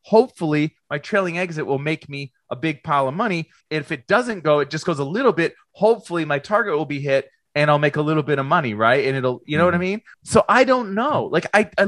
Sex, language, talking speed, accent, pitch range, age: male, English, 260 wpm, American, 130-185 Hz, 30-49